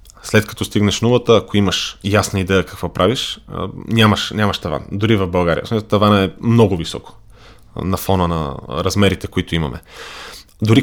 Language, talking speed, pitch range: Bulgarian, 150 wpm, 90-105 Hz